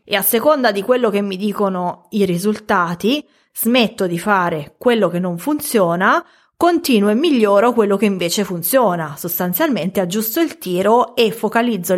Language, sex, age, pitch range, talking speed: English, female, 20-39, 185-245 Hz, 150 wpm